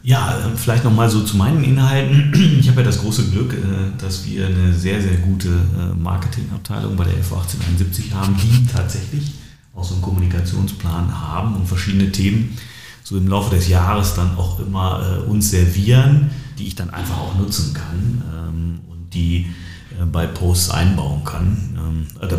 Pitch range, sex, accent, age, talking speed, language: 90-115 Hz, male, German, 40-59, 155 wpm, German